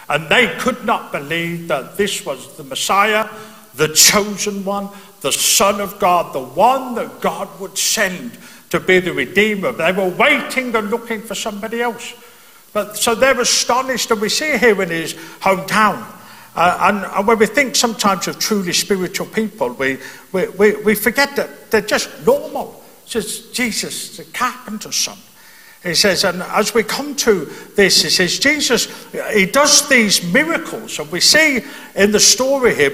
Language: English